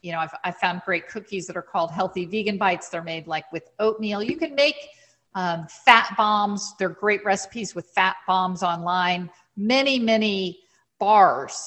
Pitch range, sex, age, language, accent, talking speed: 180-220 Hz, female, 50-69, English, American, 170 wpm